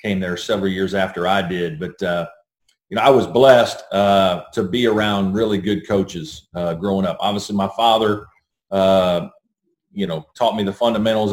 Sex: male